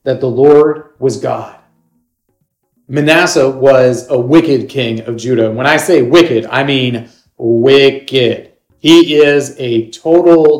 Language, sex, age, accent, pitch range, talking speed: English, male, 40-59, American, 120-165 Hz, 135 wpm